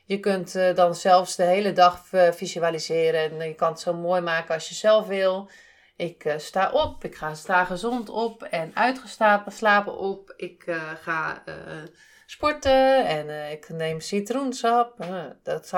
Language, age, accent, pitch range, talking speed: Dutch, 30-49, Dutch, 160-215 Hz, 170 wpm